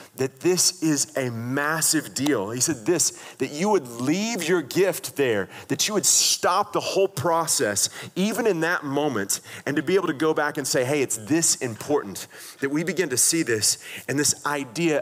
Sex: male